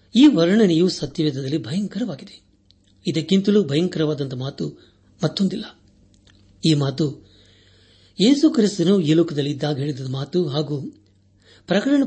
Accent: native